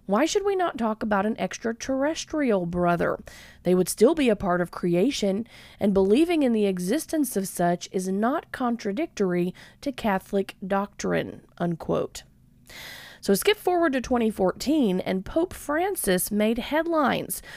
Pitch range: 190-275 Hz